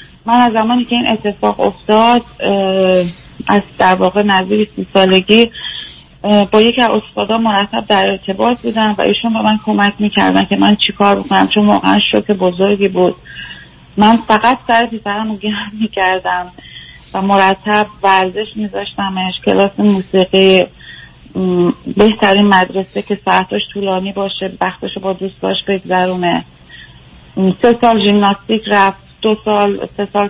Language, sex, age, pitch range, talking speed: Persian, female, 30-49, 185-215 Hz, 130 wpm